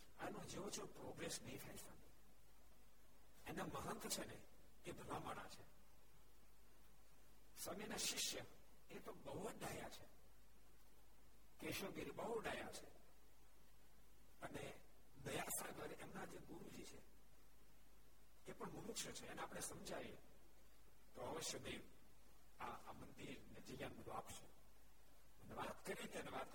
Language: Gujarati